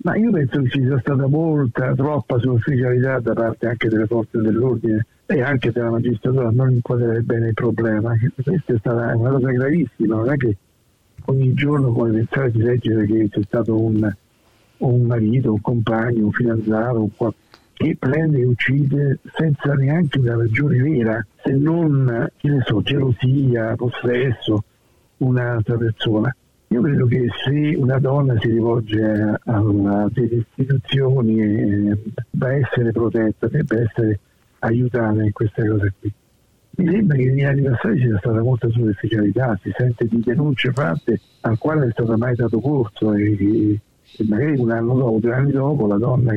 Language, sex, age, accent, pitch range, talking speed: Italian, male, 60-79, native, 110-130 Hz, 165 wpm